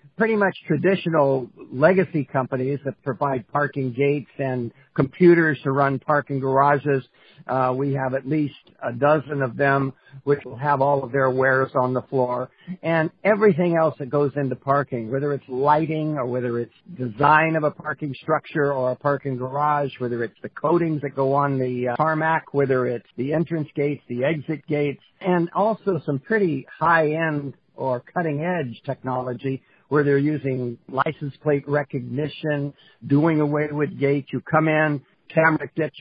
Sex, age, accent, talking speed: male, 50-69, American, 160 wpm